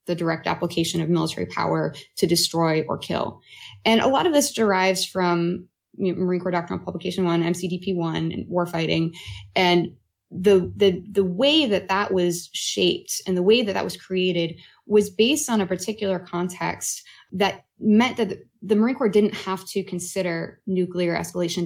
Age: 20-39